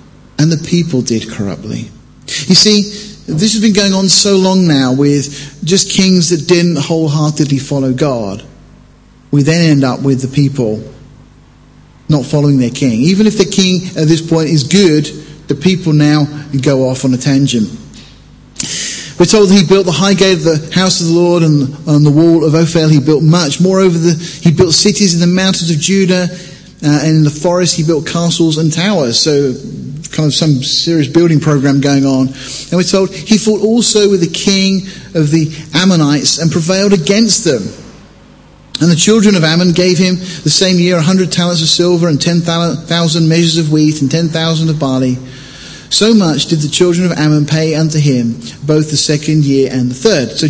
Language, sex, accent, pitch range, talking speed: English, male, British, 145-185 Hz, 190 wpm